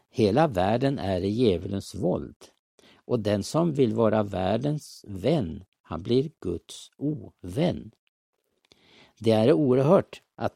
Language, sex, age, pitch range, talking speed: Swedish, male, 60-79, 100-145 Hz, 120 wpm